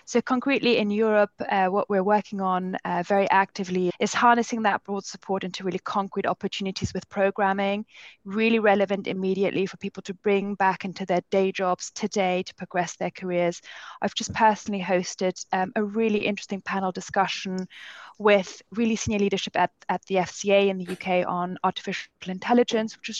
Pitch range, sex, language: 185-210 Hz, female, English